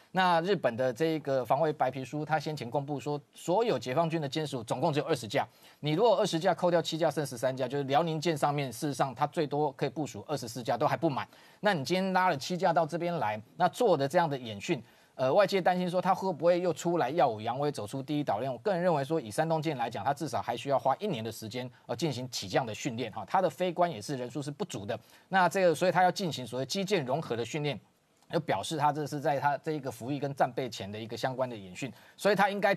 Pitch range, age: 130-170 Hz, 30-49